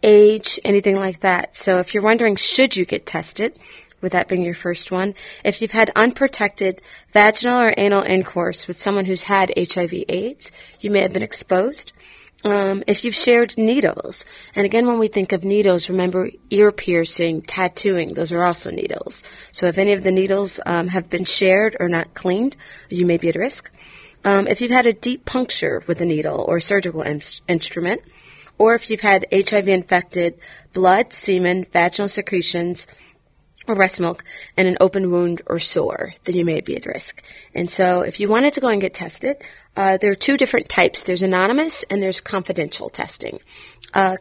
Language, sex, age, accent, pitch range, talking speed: English, female, 30-49, American, 175-205 Hz, 185 wpm